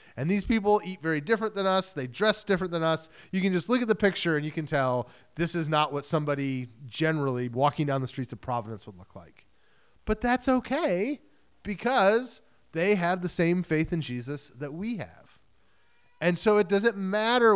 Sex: male